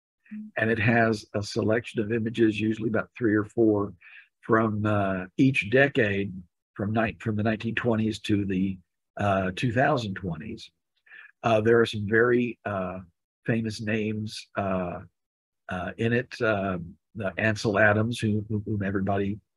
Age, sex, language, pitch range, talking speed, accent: 50-69, male, English, 100-115 Hz, 135 wpm, American